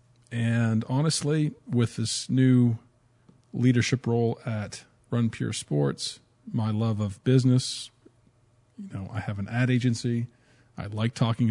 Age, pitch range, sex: 40-59, 115-135 Hz, male